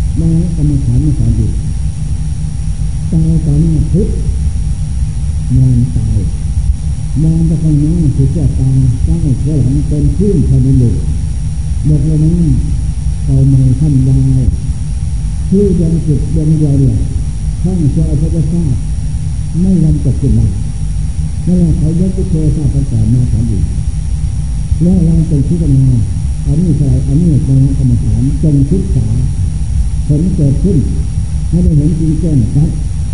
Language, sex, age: Thai, male, 50-69